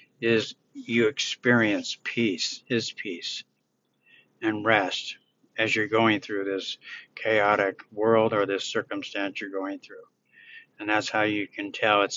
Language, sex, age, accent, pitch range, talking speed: English, male, 60-79, American, 110-135 Hz, 140 wpm